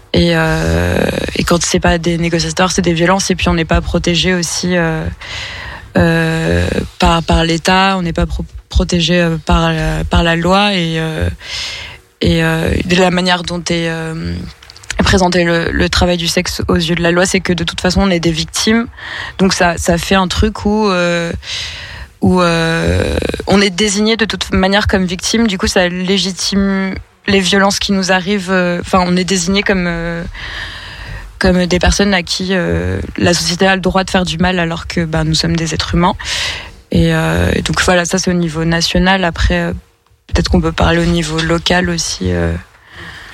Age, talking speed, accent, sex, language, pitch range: 20-39, 195 wpm, French, female, French, 160-185 Hz